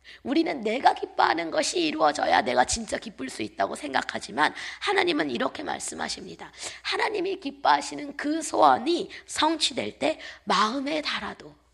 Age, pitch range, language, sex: 20-39, 270-365 Hz, Korean, female